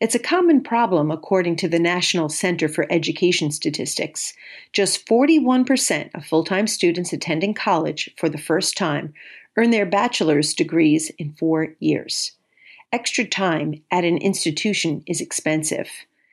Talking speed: 135 wpm